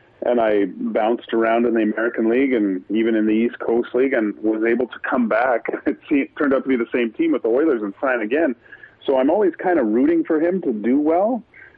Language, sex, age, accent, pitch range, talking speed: English, male, 40-59, American, 110-135 Hz, 235 wpm